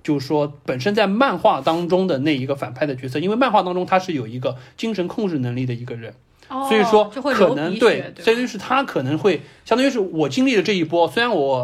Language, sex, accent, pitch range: Chinese, male, native, 135-190 Hz